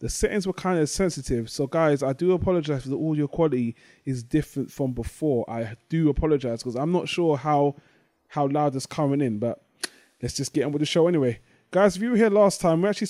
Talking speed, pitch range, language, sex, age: 230 wpm, 145-175 Hz, English, male, 20-39